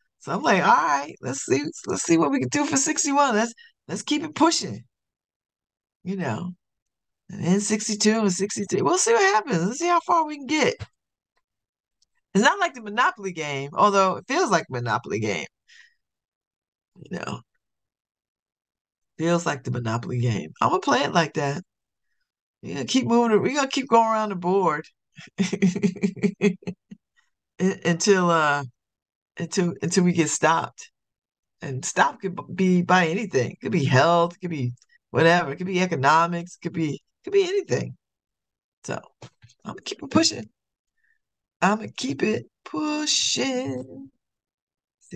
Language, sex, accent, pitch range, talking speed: English, female, American, 175-280 Hz, 155 wpm